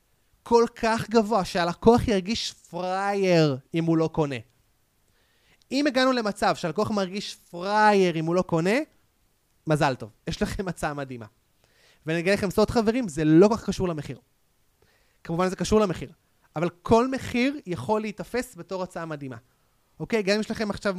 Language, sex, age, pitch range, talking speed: Hebrew, male, 30-49, 165-205 Hz, 155 wpm